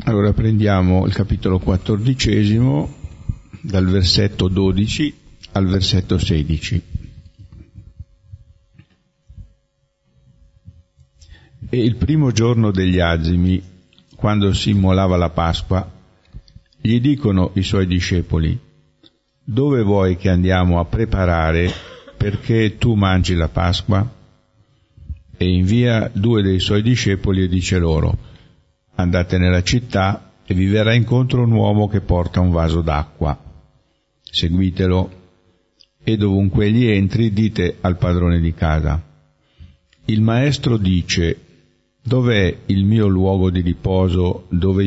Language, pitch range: Italian, 90-110 Hz